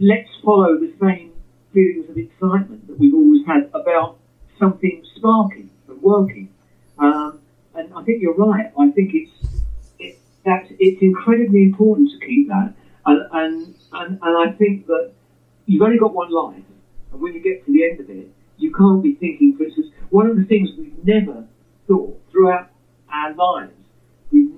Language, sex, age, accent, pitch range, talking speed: English, male, 50-69, British, 140-220 Hz, 175 wpm